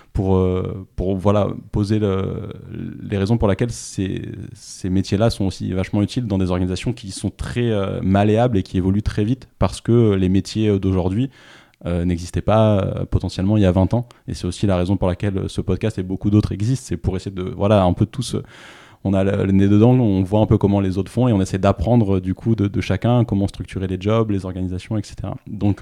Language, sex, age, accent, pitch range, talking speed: French, male, 20-39, French, 95-110 Hz, 220 wpm